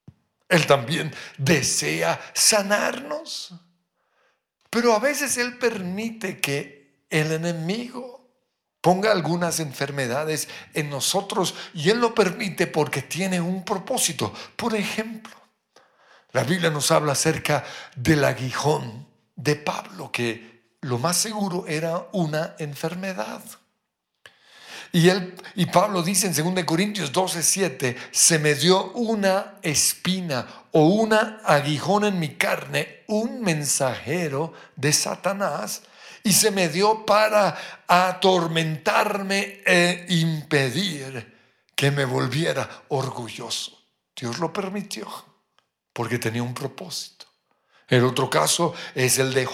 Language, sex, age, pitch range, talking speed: Spanish, male, 60-79, 140-195 Hz, 110 wpm